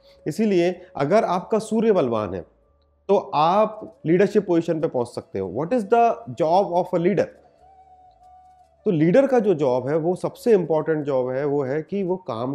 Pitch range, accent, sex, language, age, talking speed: 125-195 Hz, native, male, Hindi, 30-49, 155 wpm